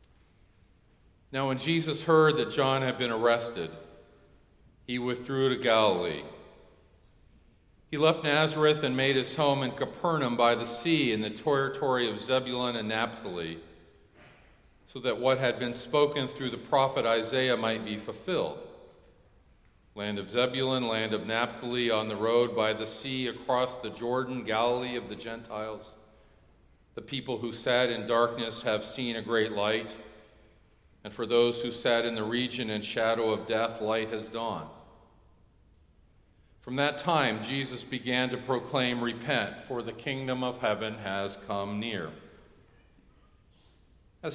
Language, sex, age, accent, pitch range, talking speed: English, male, 50-69, American, 110-130 Hz, 145 wpm